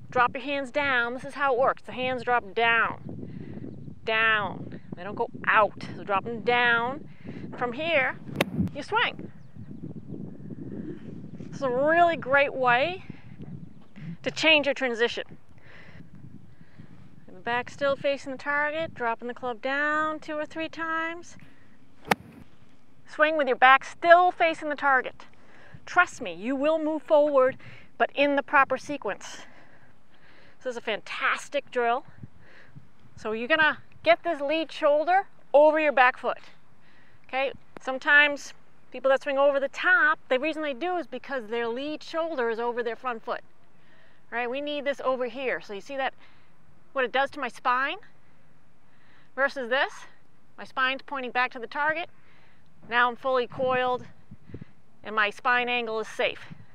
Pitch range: 245-300 Hz